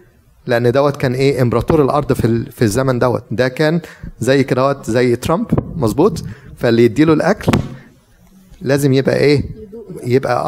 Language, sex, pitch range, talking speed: Arabic, male, 120-150 Hz, 130 wpm